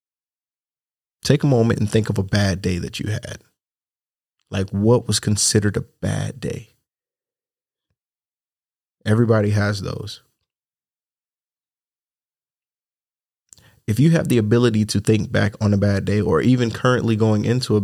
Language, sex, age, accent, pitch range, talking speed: English, male, 30-49, American, 105-120 Hz, 135 wpm